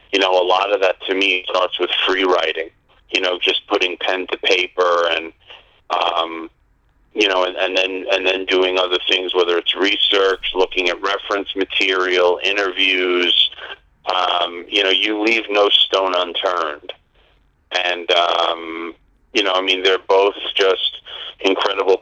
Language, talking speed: English, 155 wpm